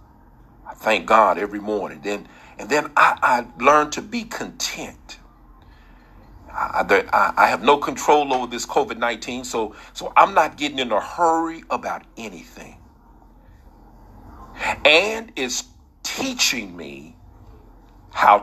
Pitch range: 90-135 Hz